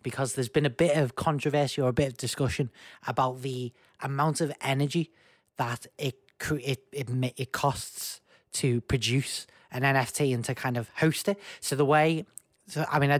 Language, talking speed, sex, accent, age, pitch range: English, 175 wpm, male, British, 20-39, 120-140 Hz